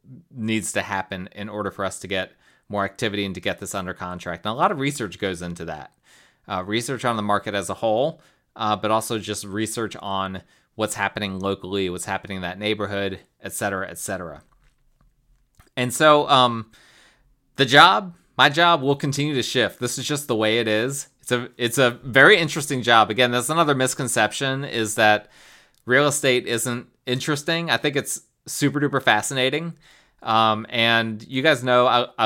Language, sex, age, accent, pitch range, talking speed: English, male, 30-49, American, 105-135 Hz, 180 wpm